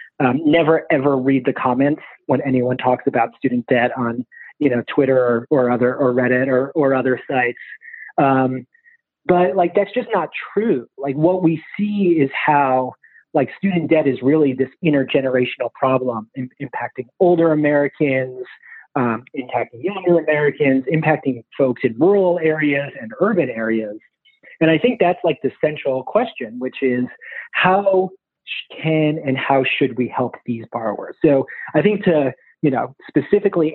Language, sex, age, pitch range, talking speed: English, male, 30-49, 125-160 Hz, 155 wpm